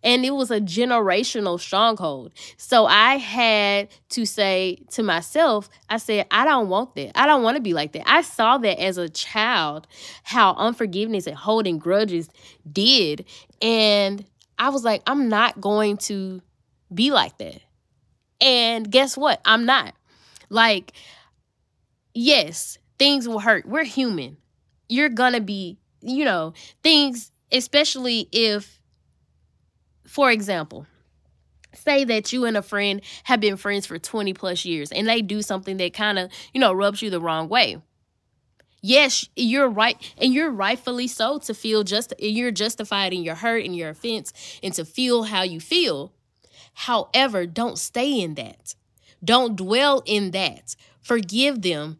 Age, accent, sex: 10-29, American, female